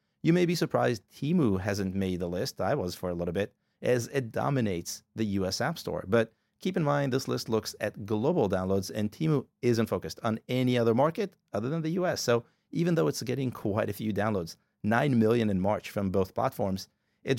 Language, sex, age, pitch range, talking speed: English, male, 30-49, 100-135 Hz, 210 wpm